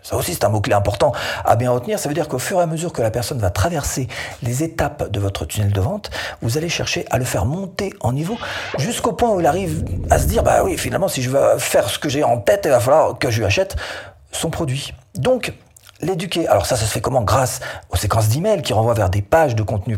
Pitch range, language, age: 100-135 Hz, French, 40-59